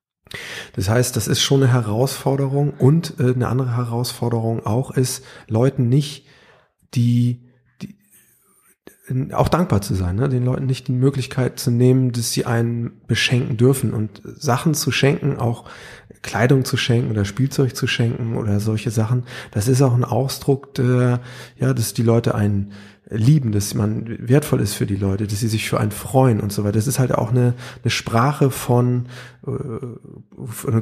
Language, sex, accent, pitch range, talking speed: German, male, German, 110-130 Hz, 165 wpm